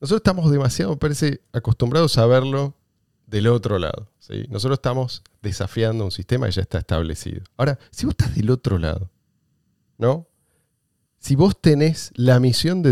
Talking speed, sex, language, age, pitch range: 160 wpm, male, Spanish, 40-59, 100-130 Hz